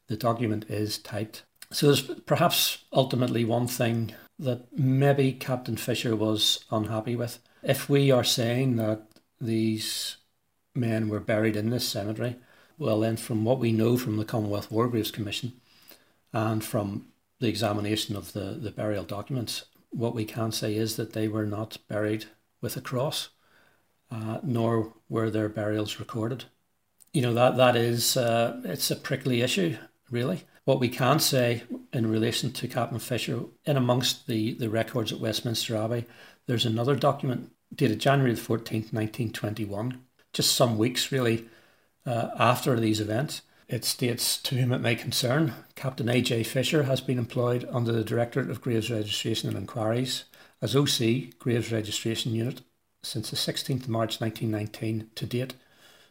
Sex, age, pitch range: male, 60-79, 110-125 Hz